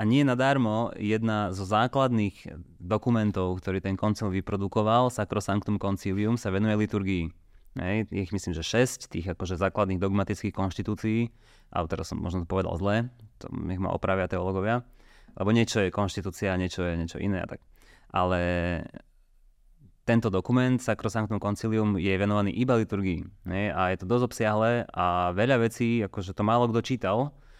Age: 20-39